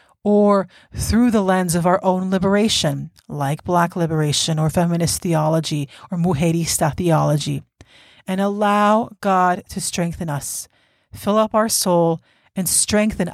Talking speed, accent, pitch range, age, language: 130 wpm, American, 170-200 Hz, 30-49, English